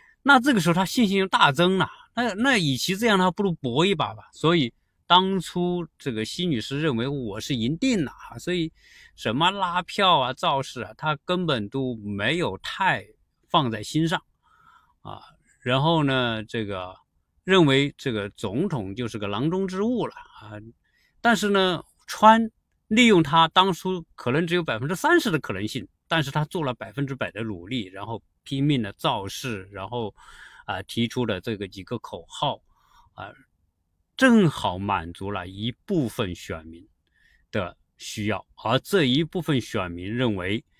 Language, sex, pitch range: Chinese, male, 110-185 Hz